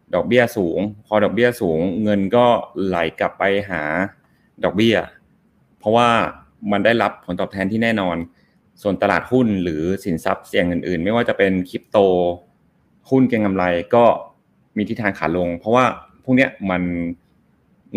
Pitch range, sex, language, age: 90-115 Hz, male, Thai, 20-39